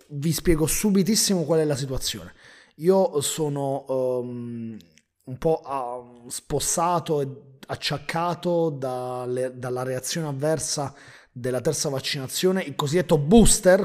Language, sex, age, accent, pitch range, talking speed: Italian, male, 30-49, native, 125-160 Hz, 115 wpm